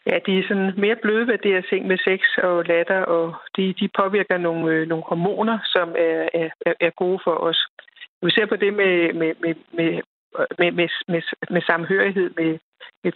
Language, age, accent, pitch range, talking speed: Danish, 60-79, native, 170-195 Hz, 195 wpm